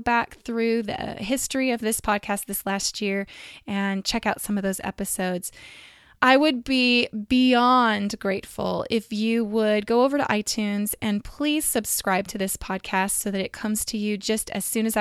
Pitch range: 205-245 Hz